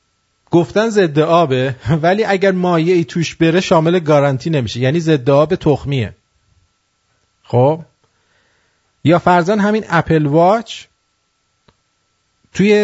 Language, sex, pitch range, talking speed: English, male, 105-175 Hz, 105 wpm